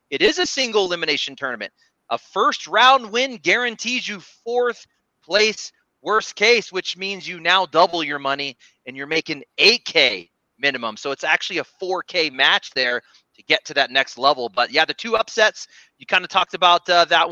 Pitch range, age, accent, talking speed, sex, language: 160-215 Hz, 30-49, American, 185 wpm, male, English